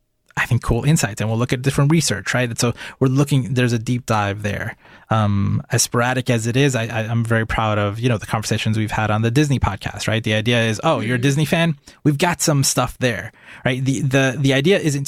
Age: 20-39